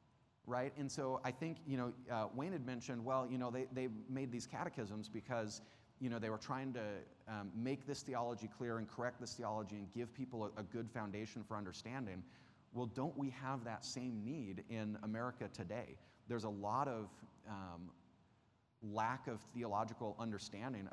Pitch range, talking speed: 105-125 Hz, 180 wpm